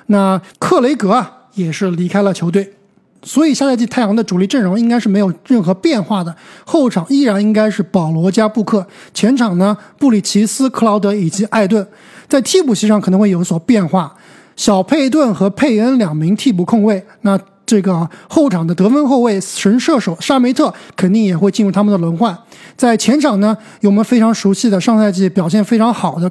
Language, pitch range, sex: Chinese, 190-235 Hz, male